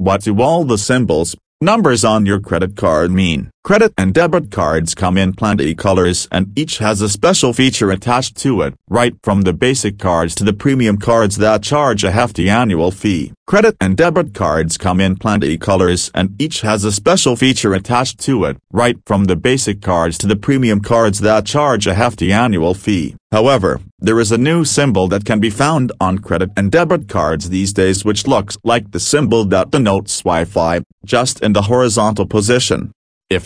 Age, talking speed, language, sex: 40-59, 190 wpm, English, male